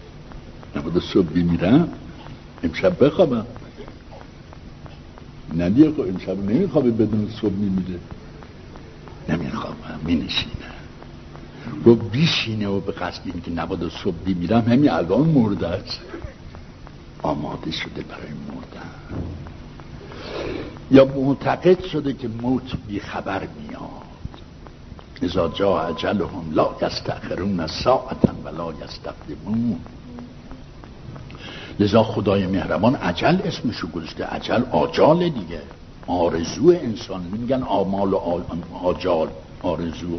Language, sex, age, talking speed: Persian, male, 60-79, 100 wpm